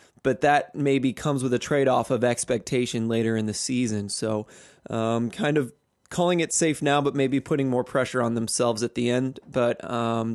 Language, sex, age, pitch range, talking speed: English, male, 20-39, 125-145 Hz, 190 wpm